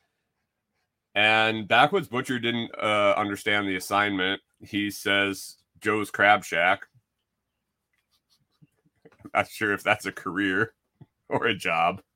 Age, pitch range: 30-49, 95-120 Hz